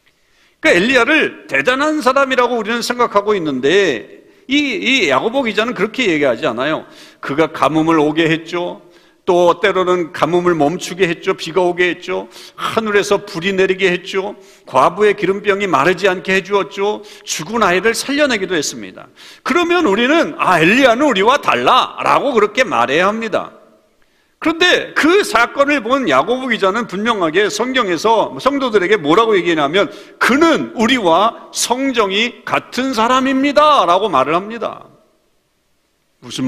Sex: male